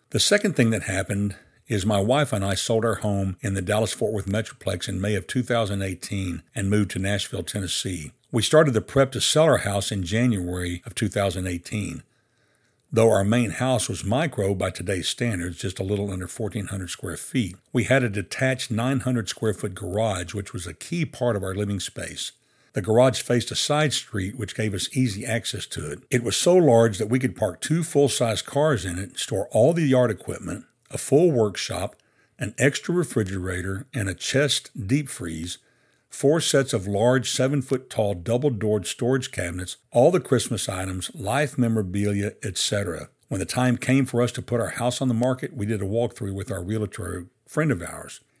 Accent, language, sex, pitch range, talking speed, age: American, English, male, 100-130 Hz, 190 wpm, 60-79